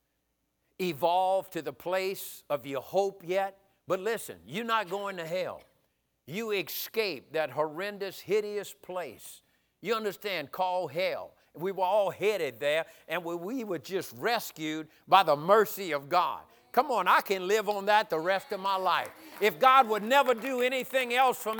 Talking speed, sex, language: 165 wpm, male, English